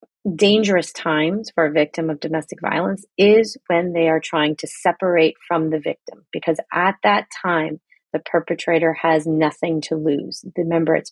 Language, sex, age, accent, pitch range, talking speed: English, female, 30-49, American, 160-185 Hz, 160 wpm